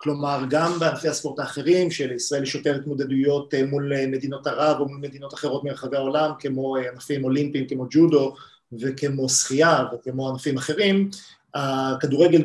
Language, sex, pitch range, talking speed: Hebrew, male, 135-165 Hz, 140 wpm